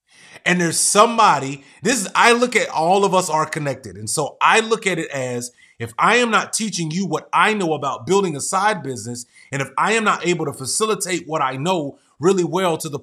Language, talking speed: English, 225 wpm